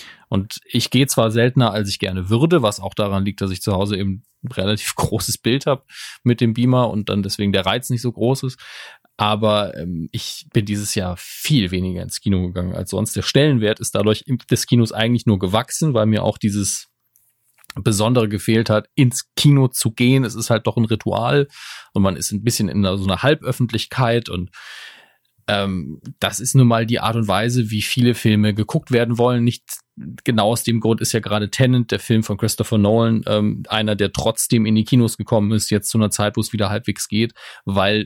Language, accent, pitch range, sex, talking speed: German, German, 100-120 Hz, male, 205 wpm